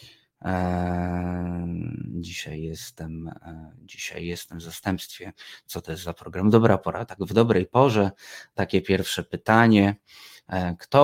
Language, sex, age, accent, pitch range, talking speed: Polish, male, 20-39, native, 90-110 Hz, 115 wpm